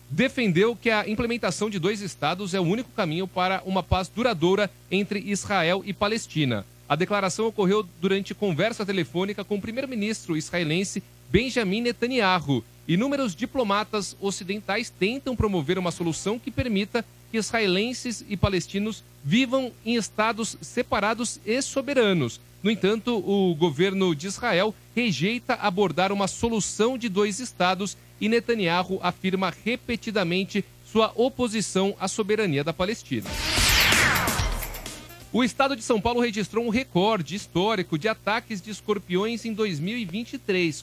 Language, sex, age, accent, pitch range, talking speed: Portuguese, male, 40-59, Brazilian, 180-225 Hz, 130 wpm